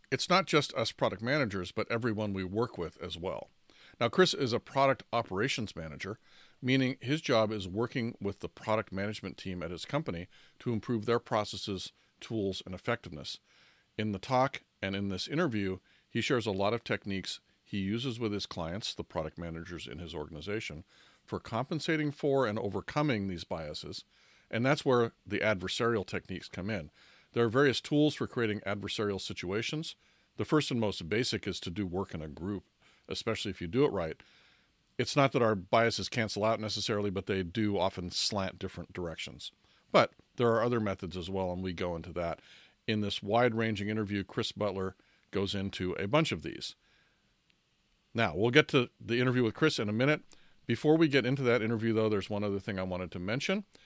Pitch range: 95-120 Hz